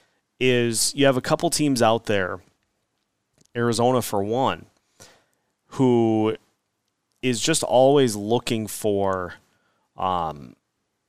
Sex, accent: male, American